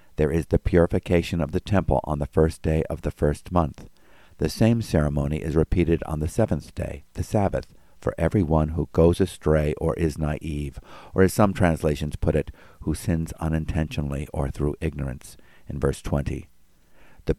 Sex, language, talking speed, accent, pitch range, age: male, English, 175 wpm, American, 75-90 Hz, 50-69